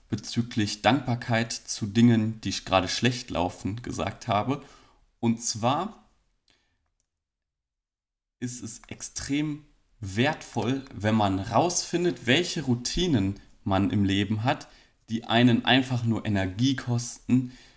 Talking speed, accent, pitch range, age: 110 wpm, German, 95-125 Hz, 30-49